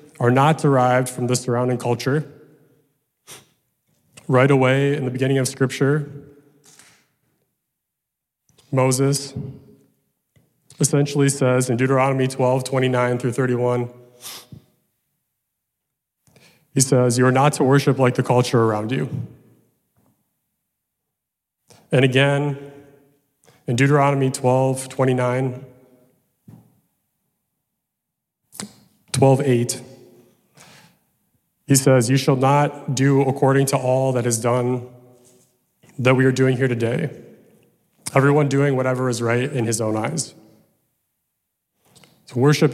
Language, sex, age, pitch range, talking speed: English, male, 30-49, 125-140 Hz, 100 wpm